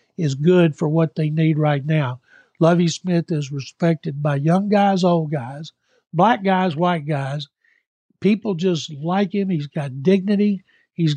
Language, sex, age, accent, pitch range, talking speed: English, male, 60-79, American, 155-190 Hz, 155 wpm